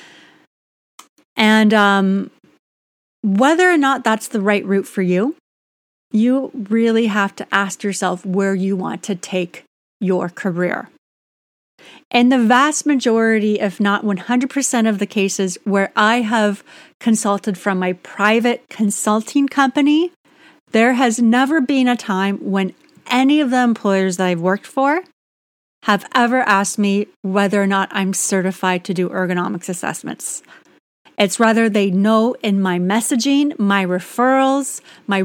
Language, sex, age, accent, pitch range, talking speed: English, female, 30-49, American, 195-240 Hz, 140 wpm